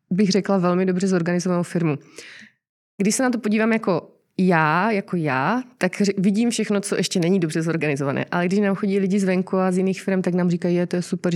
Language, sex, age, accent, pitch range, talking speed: Czech, female, 20-39, native, 170-195 Hz, 210 wpm